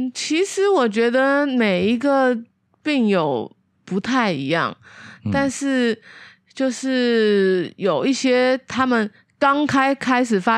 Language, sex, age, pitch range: Chinese, female, 20-39, 195-255 Hz